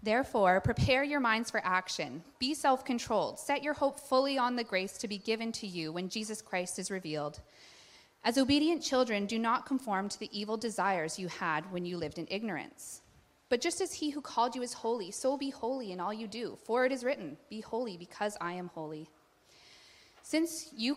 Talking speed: 200 wpm